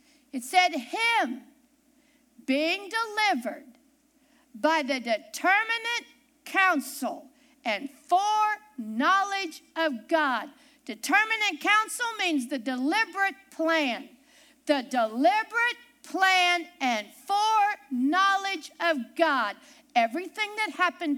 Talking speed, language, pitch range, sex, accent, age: 80 wpm, English, 275-365 Hz, female, American, 50-69